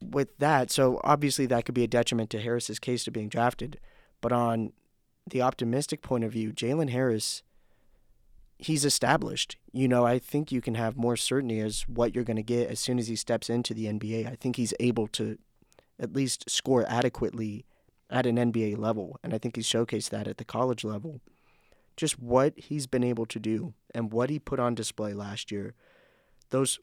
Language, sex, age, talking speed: English, male, 30-49, 195 wpm